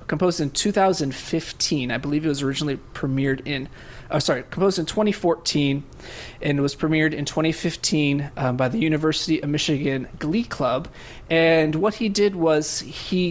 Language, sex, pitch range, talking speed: English, male, 135-165 Hz, 160 wpm